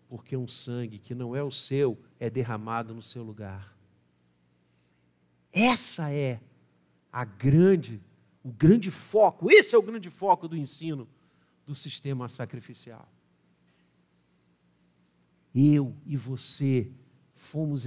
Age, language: 50-69, Portuguese